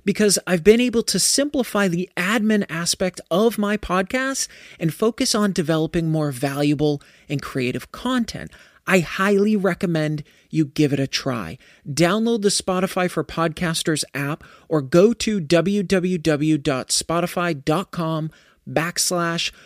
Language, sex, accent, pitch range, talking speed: English, male, American, 140-190 Hz, 120 wpm